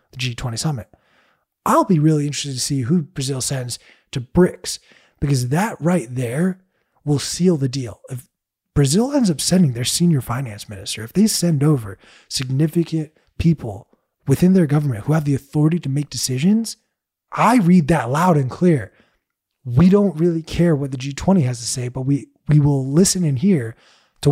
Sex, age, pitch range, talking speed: male, 20-39, 130-170 Hz, 175 wpm